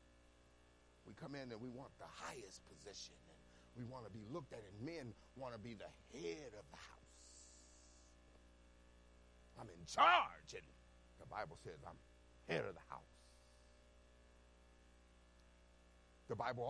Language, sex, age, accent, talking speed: English, male, 50-69, American, 140 wpm